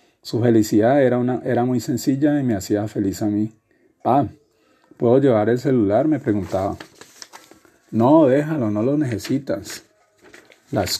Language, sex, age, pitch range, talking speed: Spanish, male, 40-59, 110-125 Hz, 140 wpm